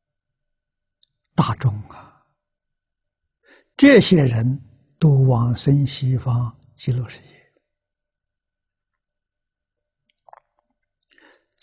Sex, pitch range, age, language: male, 120-165 Hz, 60-79, Chinese